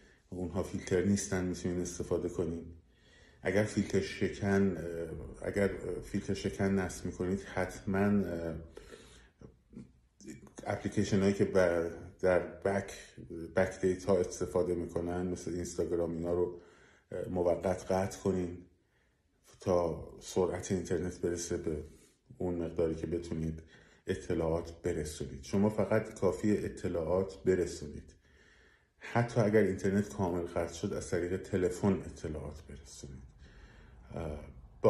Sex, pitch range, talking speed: male, 85-100 Hz, 105 wpm